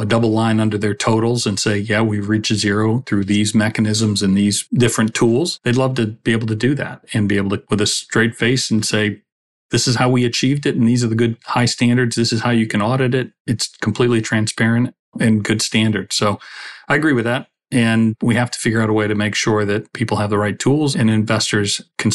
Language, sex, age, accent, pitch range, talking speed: English, male, 40-59, American, 105-120 Hz, 240 wpm